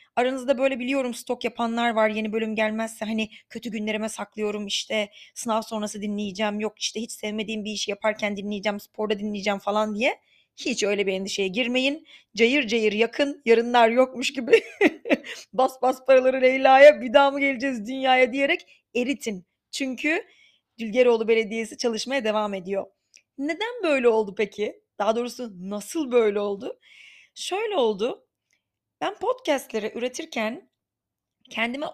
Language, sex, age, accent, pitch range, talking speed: Turkish, female, 30-49, native, 215-275 Hz, 135 wpm